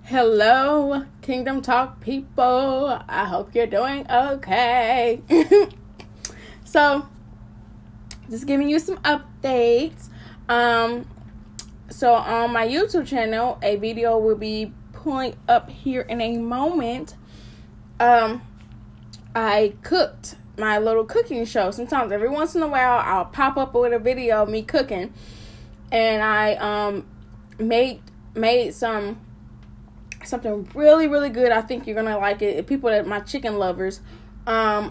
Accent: American